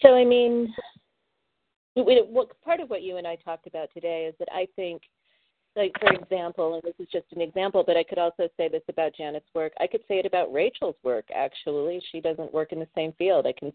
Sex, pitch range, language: female, 155-190 Hz, English